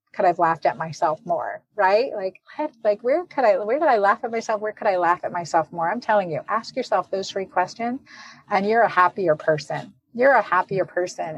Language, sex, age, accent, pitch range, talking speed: English, female, 40-59, American, 170-215 Hz, 220 wpm